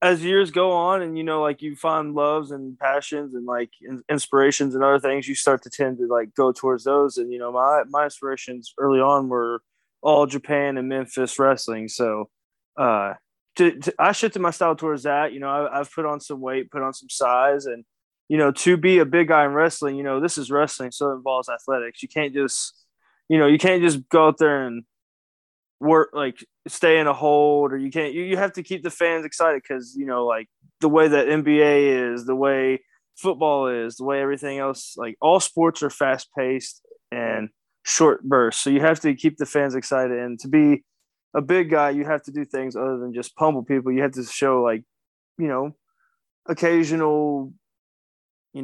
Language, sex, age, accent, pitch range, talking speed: English, male, 20-39, American, 130-155 Hz, 205 wpm